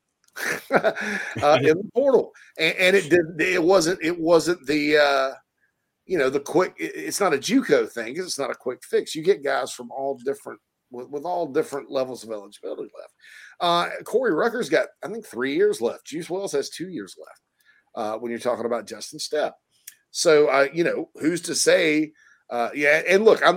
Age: 50-69